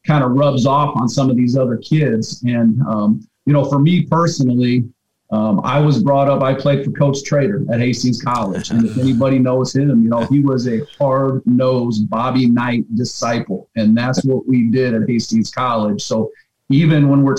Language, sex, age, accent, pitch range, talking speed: English, male, 40-59, American, 120-140 Hz, 195 wpm